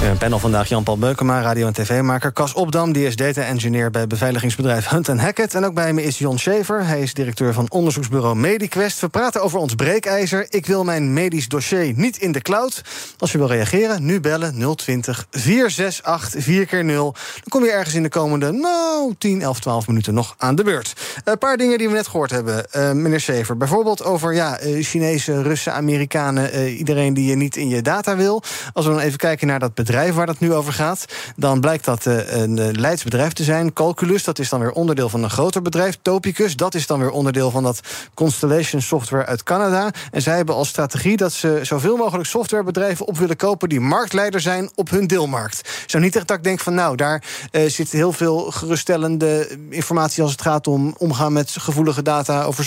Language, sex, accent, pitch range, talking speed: Dutch, male, Dutch, 135-185 Hz, 200 wpm